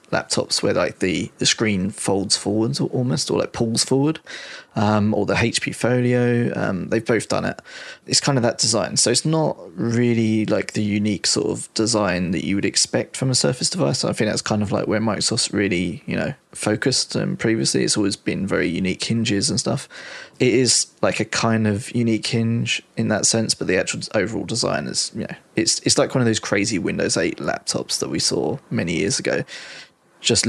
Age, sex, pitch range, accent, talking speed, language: 20-39, male, 105-125 Hz, British, 205 wpm, English